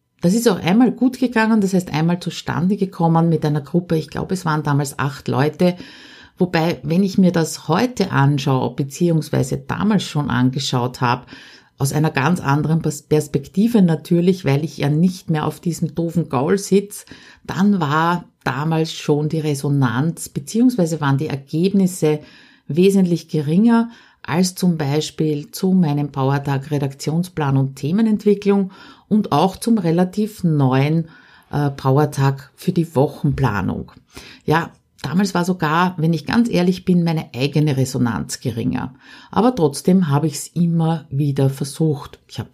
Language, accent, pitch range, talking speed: German, Austrian, 145-180 Hz, 145 wpm